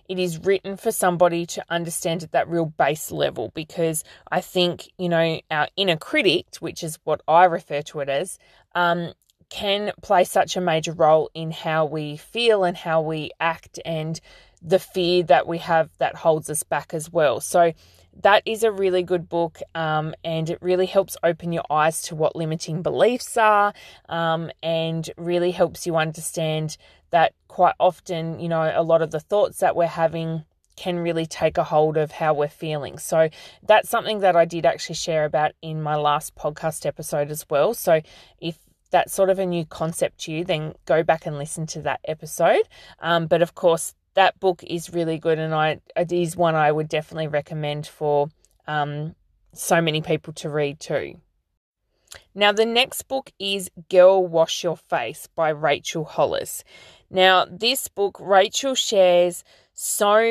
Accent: Australian